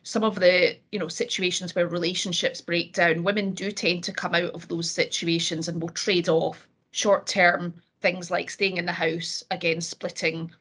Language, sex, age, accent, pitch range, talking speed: English, female, 30-49, British, 170-215 Hz, 170 wpm